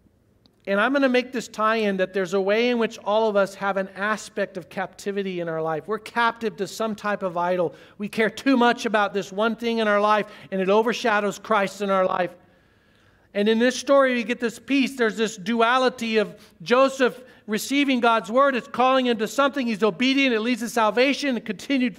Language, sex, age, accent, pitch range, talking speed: English, male, 50-69, American, 200-265 Hz, 215 wpm